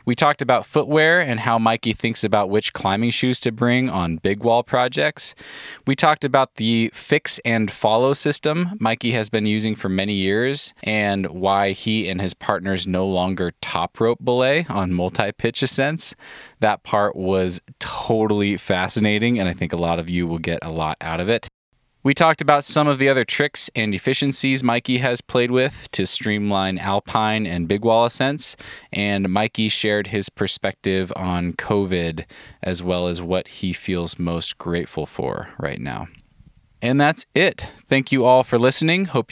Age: 20-39